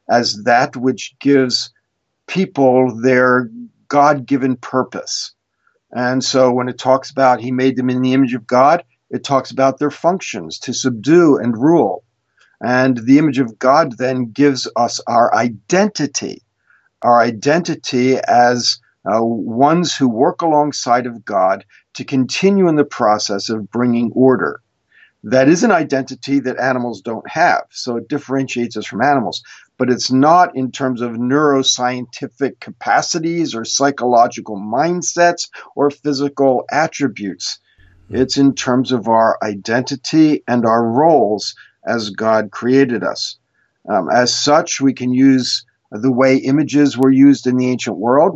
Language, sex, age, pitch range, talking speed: English, male, 50-69, 120-140 Hz, 145 wpm